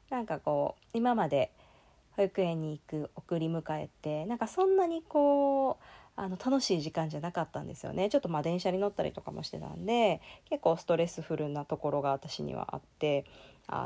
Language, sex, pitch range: Japanese, female, 155-205 Hz